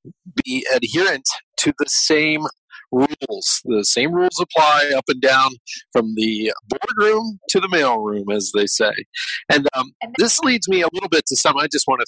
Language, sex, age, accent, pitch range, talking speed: English, male, 40-59, American, 130-210 Hz, 180 wpm